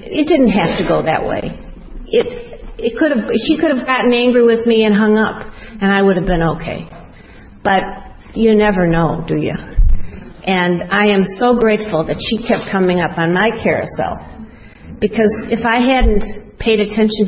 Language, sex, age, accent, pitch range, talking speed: English, female, 50-69, American, 180-220 Hz, 180 wpm